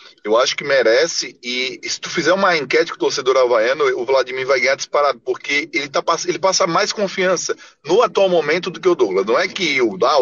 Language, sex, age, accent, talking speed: Portuguese, male, 20-39, Brazilian, 225 wpm